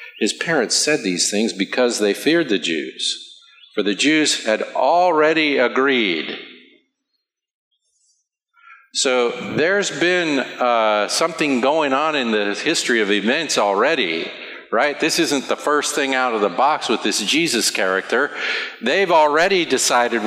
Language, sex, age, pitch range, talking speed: English, male, 50-69, 125-205 Hz, 135 wpm